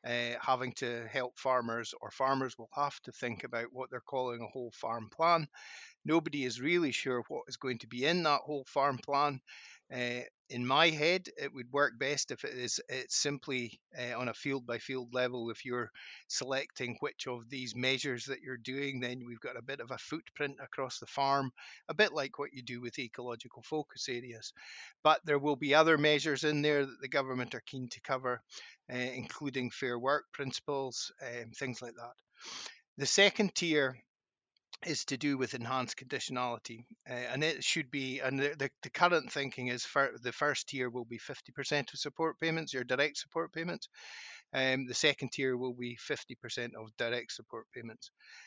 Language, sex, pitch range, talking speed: English, male, 125-145 Hz, 190 wpm